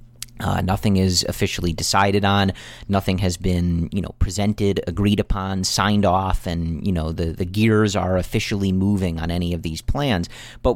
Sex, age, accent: male, 40-59, American